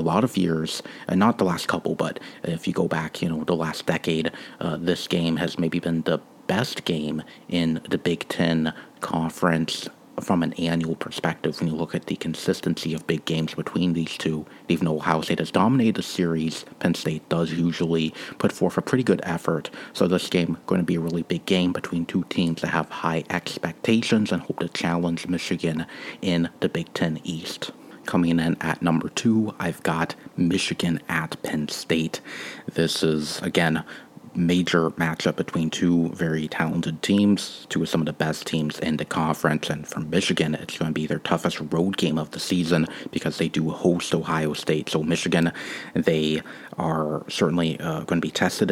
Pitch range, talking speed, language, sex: 80-90 Hz, 190 wpm, English, male